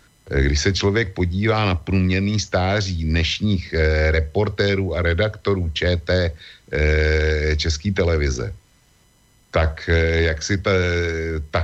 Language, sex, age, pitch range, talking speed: Slovak, male, 60-79, 80-100 Hz, 95 wpm